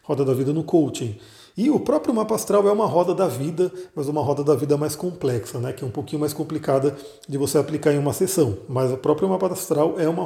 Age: 40-59